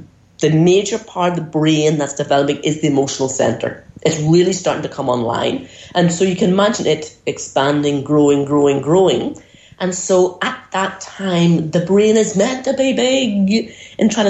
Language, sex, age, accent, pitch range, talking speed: English, female, 30-49, British, 145-185 Hz, 175 wpm